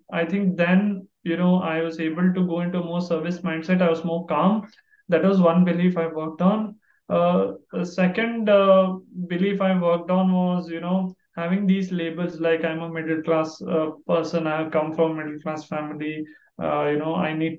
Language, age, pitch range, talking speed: English, 20-39, 165-195 Hz, 200 wpm